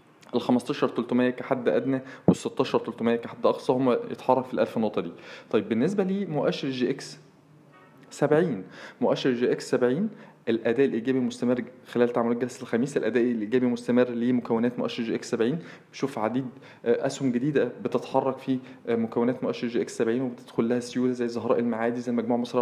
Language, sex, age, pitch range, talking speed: Arabic, male, 20-39, 120-135 Hz, 165 wpm